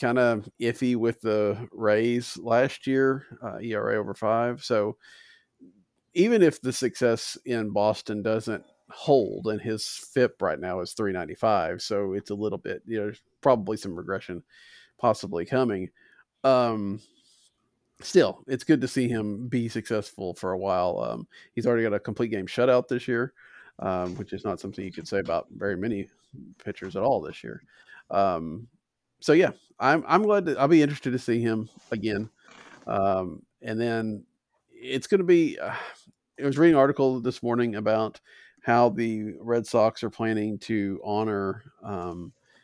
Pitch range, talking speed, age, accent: 100-120 Hz, 165 wpm, 40-59, American